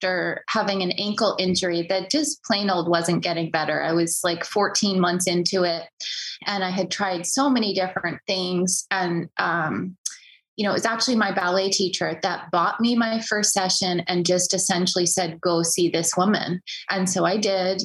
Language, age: English, 20-39